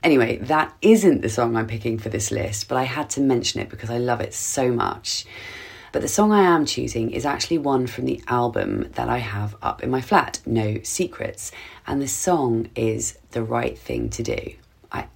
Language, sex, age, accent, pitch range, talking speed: English, female, 30-49, British, 110-130 Hz, 210 wpm